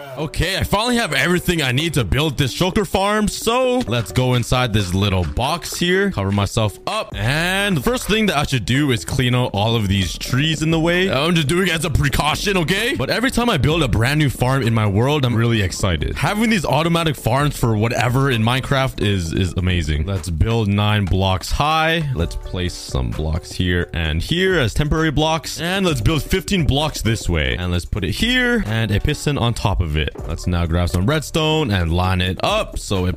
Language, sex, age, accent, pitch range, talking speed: English, male, 20-39, American, 95-155 Hz, 215 wpm